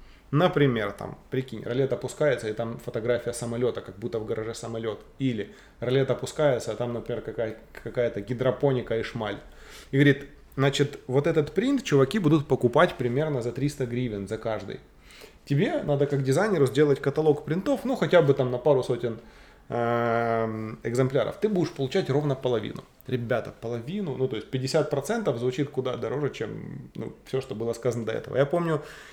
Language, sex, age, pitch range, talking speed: Russian, male, 20-39, 120-140 Hz, 160 wpm